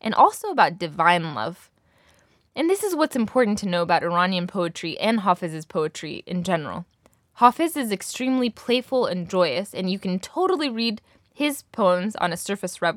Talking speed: 165 wpm